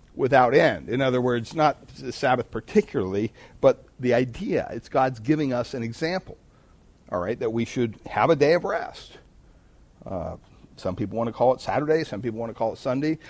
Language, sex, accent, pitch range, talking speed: English, male, American, 115-145 Hz, 195 wpm